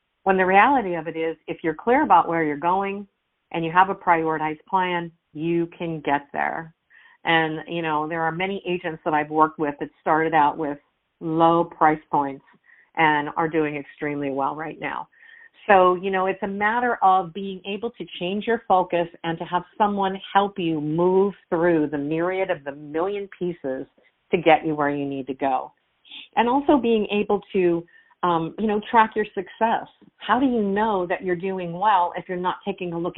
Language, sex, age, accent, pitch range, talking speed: English, female, 50-69, American, 160-195 Hz, 195 wpm